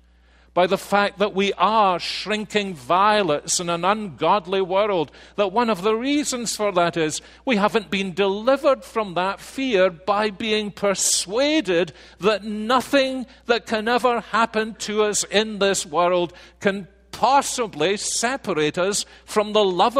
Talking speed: 145 wpm